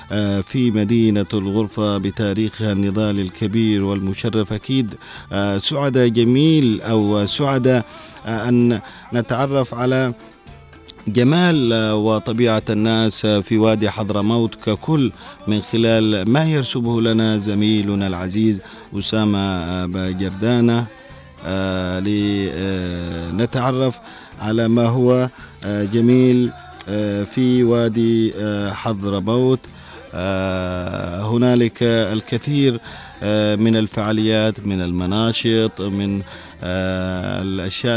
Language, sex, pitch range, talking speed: Arabic, male, 100-115 Hz, 75 wpm